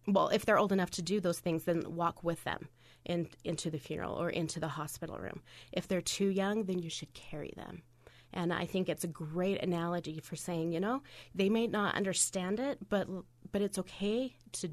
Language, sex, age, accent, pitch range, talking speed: English, female, 30-49, American, 170-215 Hz, 210 wpm